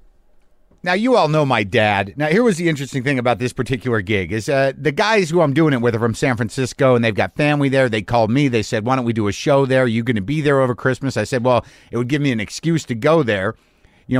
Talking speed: 285 wpm